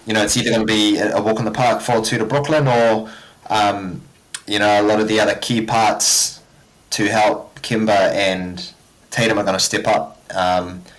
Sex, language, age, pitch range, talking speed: male, English, 20-39, 105-115 Hz, 200 wpm